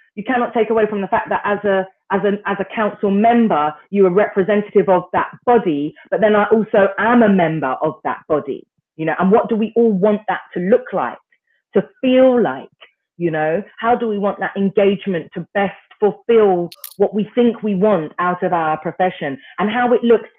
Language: English